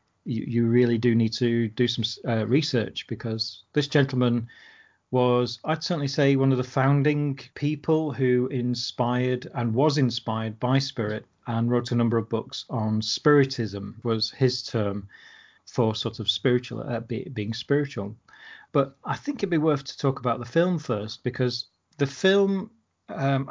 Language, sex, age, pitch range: English, male, 40-59, 115-140 Hz